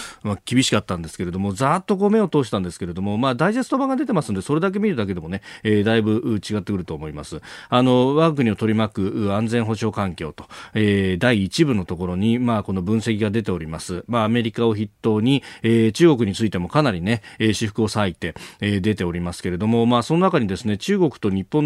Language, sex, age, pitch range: Japanese, male, 40-59, 100-145 Hz